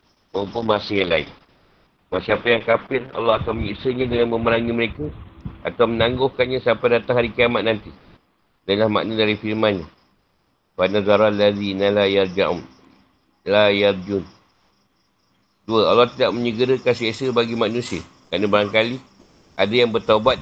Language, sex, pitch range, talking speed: Malay, male, 100-125 Hz, 125 wpm